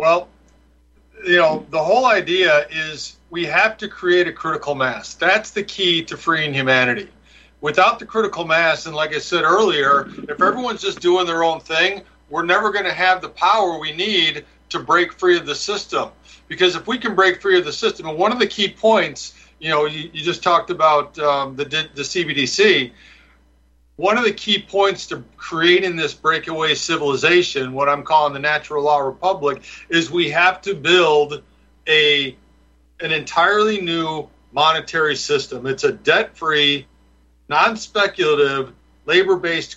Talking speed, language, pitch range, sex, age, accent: 165 wpm, English, 135-185 Hz, male, 50-69, American